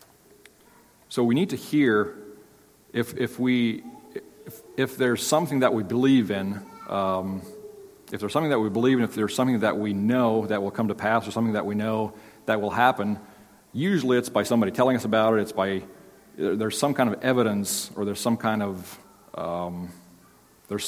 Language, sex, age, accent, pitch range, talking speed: English, male, 40-59, American, 105-125 Hz, 185 wpm